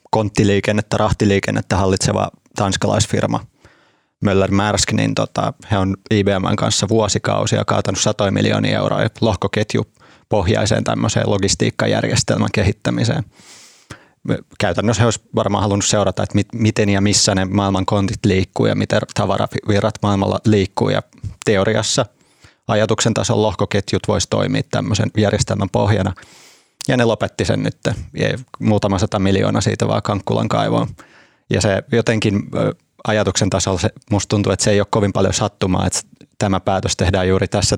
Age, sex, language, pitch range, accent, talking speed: 30-49, male, Finnish, 100-110 Hz, native, 125 wpm